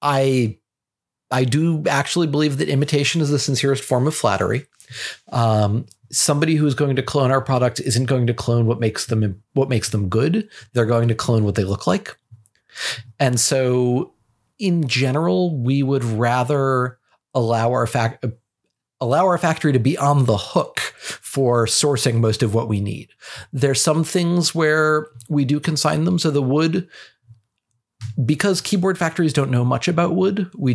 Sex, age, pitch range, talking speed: male, 40-59, 115-140 Hz, 165 wpm